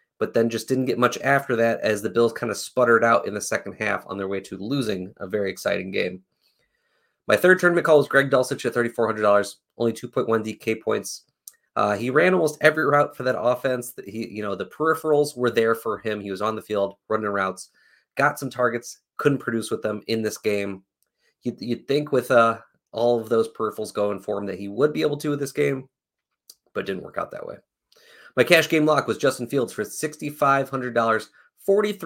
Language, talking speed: English, 210 wpm